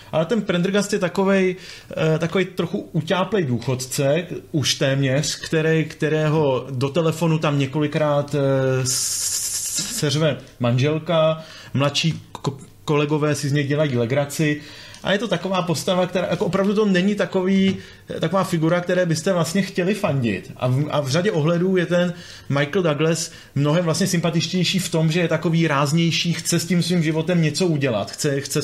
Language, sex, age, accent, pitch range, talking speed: Czech, male, 30-49, native, 140-170 Hz, 145 wpm